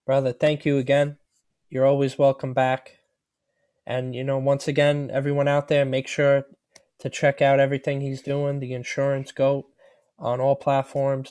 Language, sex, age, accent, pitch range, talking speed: English, male, 20-39, American, 130-145 Hz, 160 wpm